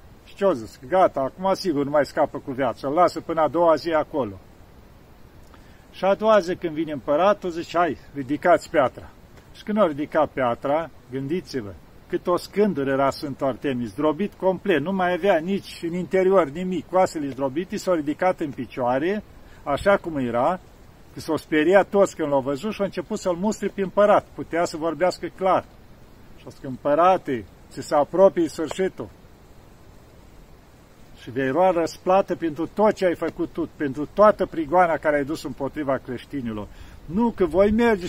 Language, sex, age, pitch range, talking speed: Romanian, male, 50-69, 140-185 Hz, 165 wpm